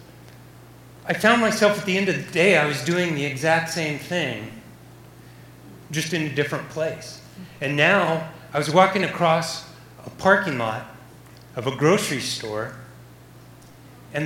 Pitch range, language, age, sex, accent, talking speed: 130-180 Hz, English, 40-59, male, American, 145 wpm